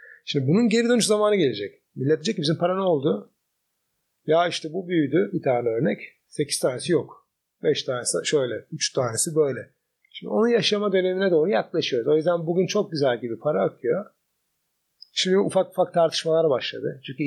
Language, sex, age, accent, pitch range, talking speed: Turkish, male, 40-59, native, 145-205 Hz, 165 wpm